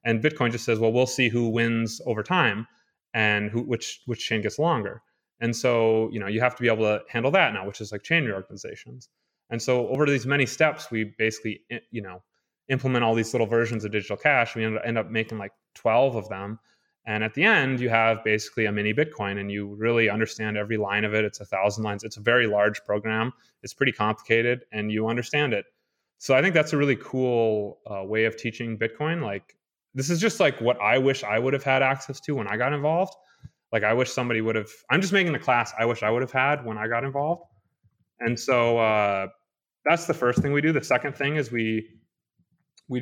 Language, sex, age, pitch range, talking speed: English, male, 30-49, 110-130 Hz, 225 wpm